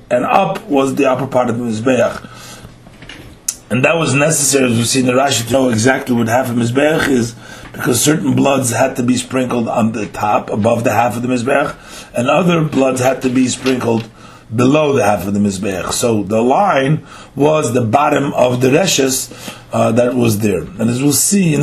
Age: 40-59